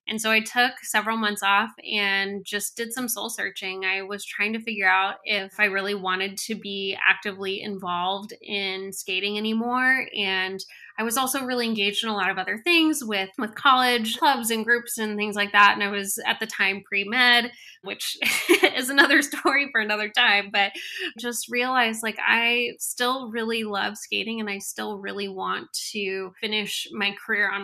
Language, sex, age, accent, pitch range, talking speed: English, female, 10-29, American, 200-235 Hz, 185 wpm